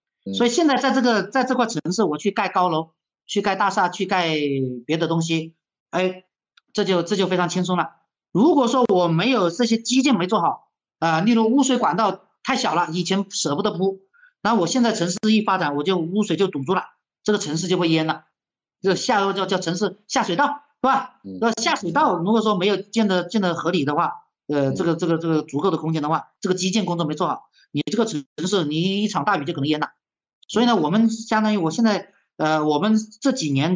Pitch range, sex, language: 160-220 Hz, male, Chinese